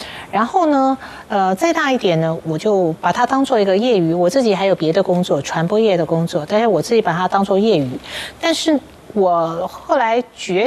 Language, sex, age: Chinese, female, 40-59